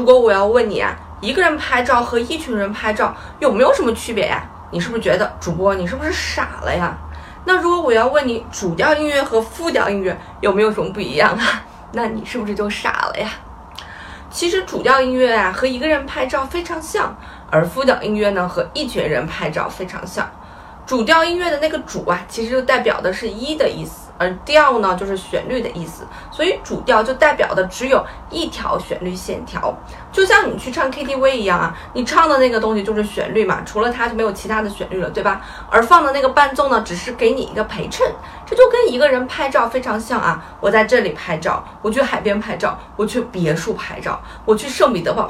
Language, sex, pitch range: Chinese, female, 215-300 Hz